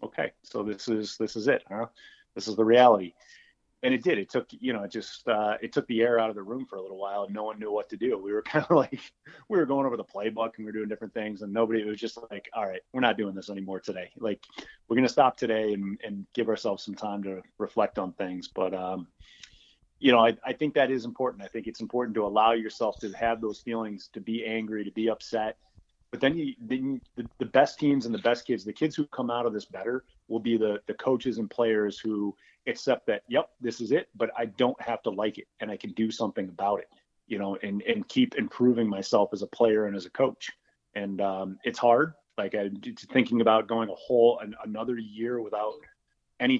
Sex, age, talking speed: male, 30-49, 245 wpm